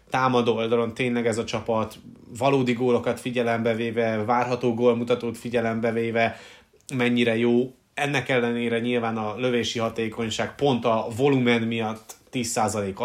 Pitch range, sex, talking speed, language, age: 115-135 Hz, male, 115 wpm, Hungarian, 30-49